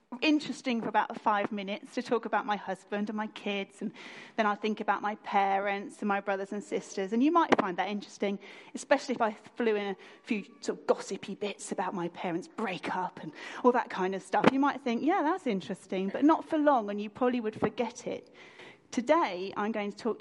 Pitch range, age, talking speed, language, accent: 205-265 Hz, 30-49, 220 wpm, English, British